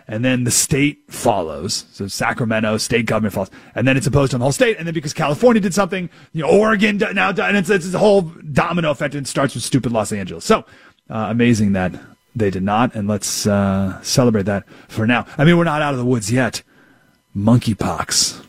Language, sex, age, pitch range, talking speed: English, male, 30-49, 110-175 Hz, 225 wpm